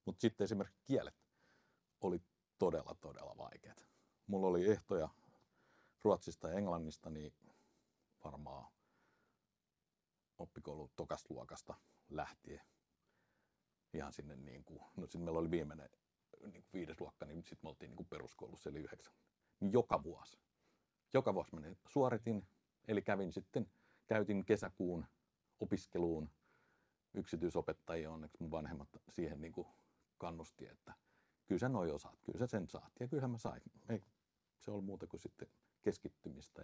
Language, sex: Finnish, male